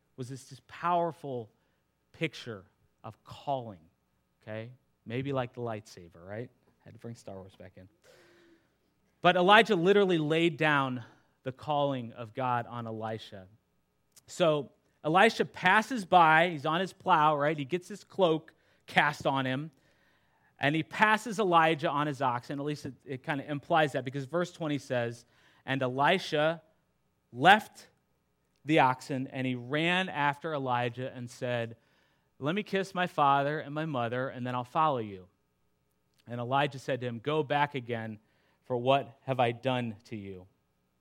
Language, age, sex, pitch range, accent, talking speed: English, 30-49, male, 115-155 Hz, American, 160 wpm